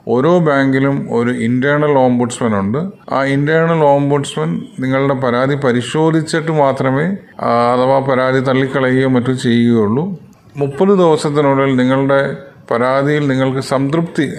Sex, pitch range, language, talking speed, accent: male, 125-150 Hz, Malayalam, 105 wpm, native